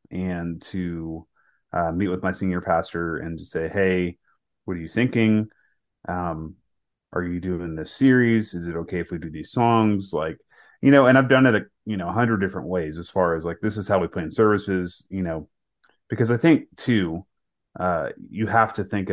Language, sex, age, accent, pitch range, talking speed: English, male, 30-49, American, 85-105 Hz, 200 wpm